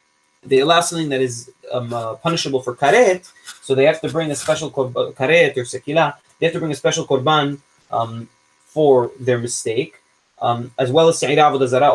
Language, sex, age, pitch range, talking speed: English, male, 20-39, 125-155 Hz, 190 wpm